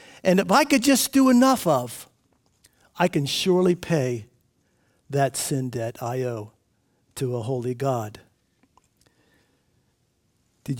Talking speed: 120 wpm